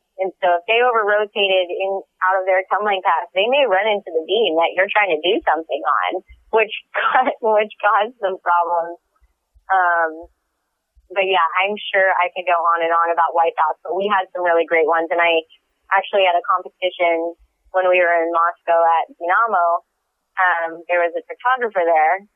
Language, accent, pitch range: English, American, 170-210 Hz